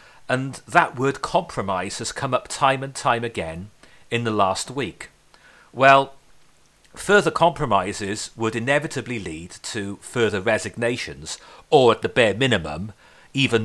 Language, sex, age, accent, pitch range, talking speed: English, male, 40-59, British, 105-135 Hz, 130 wpm